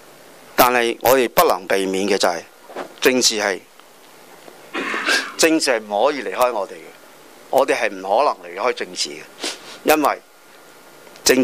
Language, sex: Chinese, male